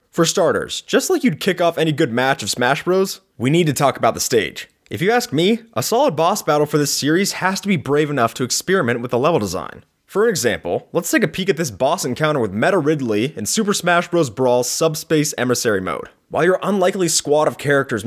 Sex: male